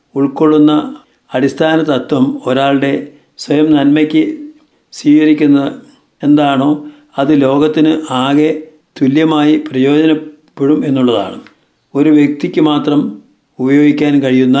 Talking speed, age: 80 wpm, 50-69